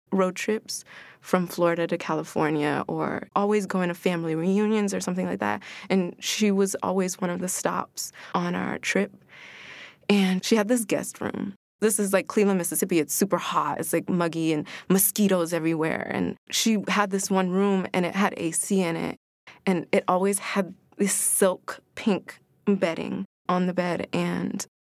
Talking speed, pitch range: 170 wpm, 180-205 Hz